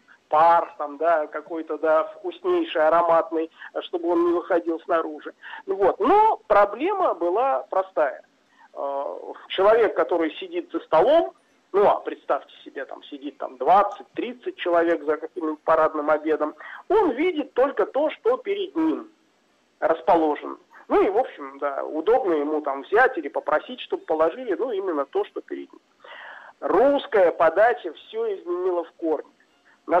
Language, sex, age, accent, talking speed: Russian, male, 40-59, native, 140 wpm